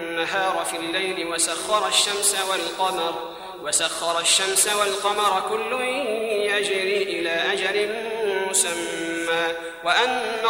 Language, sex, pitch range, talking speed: Arabic, male, 190-245 Hz, 80 wpm